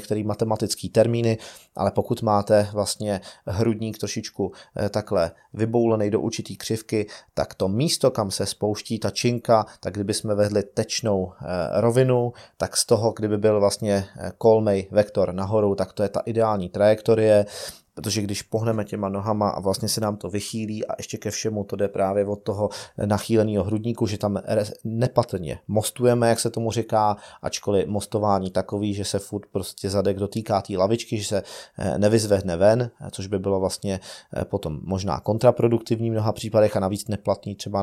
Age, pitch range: 30-49, 100-115 Hz